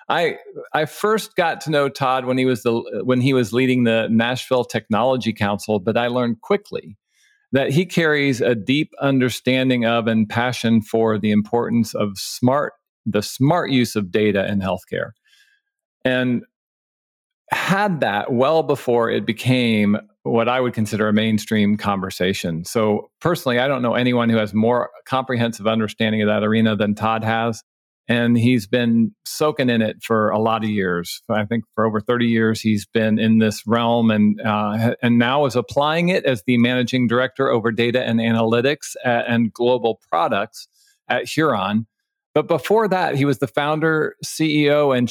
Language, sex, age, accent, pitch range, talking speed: English, male, 40-59, American, 110-135 Hz, 170 wpm